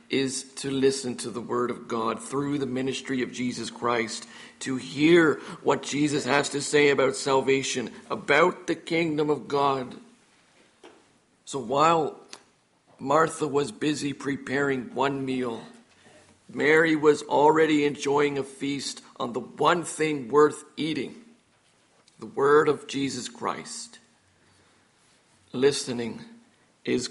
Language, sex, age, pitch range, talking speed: English, male, 50-69, 125-150 Hz, 120 wpm